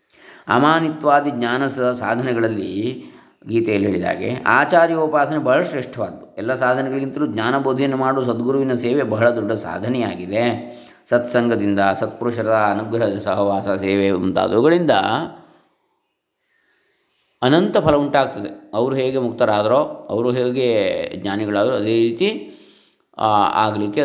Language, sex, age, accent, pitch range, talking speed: Kannada, male, 20-39, native, 110-145 Hz, 90 wpm